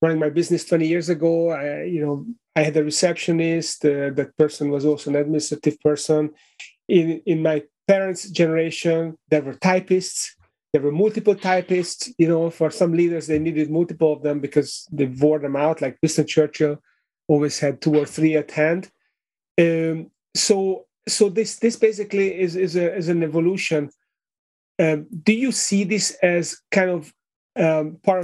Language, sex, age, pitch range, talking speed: English, male, 30-49, 150-175 Hz, 170 wpm